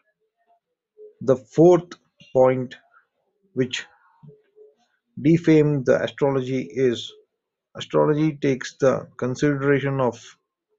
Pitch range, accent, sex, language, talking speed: 130-205 Hz, Indian, male, English, 70 wpm